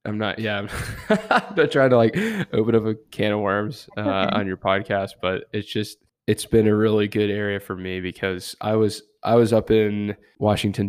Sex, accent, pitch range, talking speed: male, American, 100-115 Hz, 210 wpm